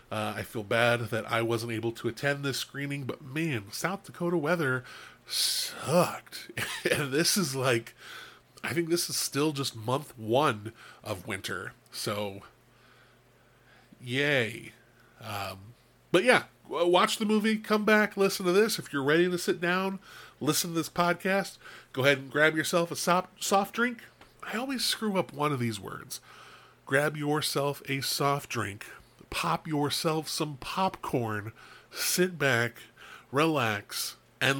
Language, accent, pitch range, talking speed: English, American, 125-180 Hz, 145 wpm